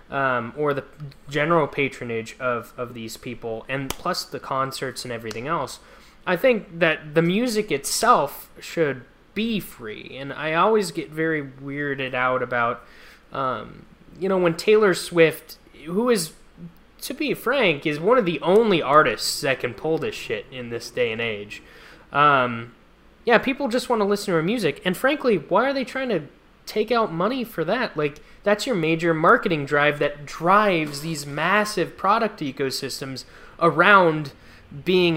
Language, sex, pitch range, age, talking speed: English, male, 135-190 Hz, 20-39, 165 wpm